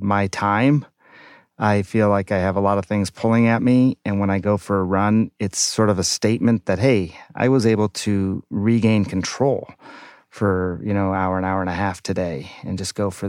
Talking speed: 215 wpm